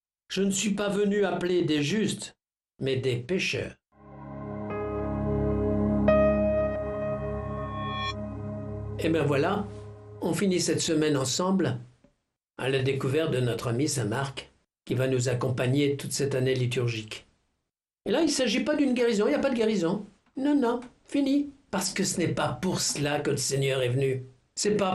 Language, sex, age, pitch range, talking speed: French, male, 60-79, 125-175 Hz, 160 wpm